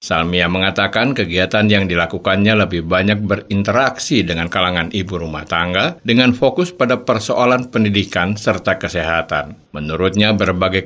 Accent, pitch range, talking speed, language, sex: native, 95-125 Hz, 120 wpm, Indonesian, male